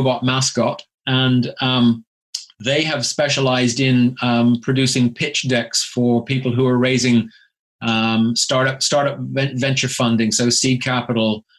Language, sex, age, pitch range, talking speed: English, male, 30-49, 120-130 Hz, 125 wpm